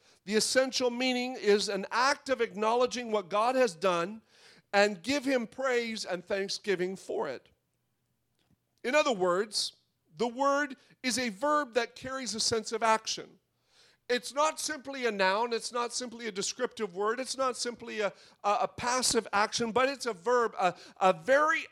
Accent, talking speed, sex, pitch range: American, 165 wpm, male, 205-255 Hz